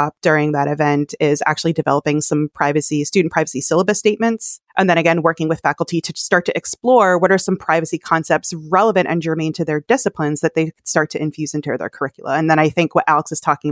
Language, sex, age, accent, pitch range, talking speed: English, female, 30-49, American, 160-195 Hz, 215 wpm